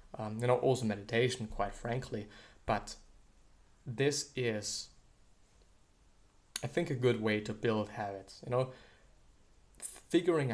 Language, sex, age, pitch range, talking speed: English, male, 20-39, 110-125 Hz, 120 wpm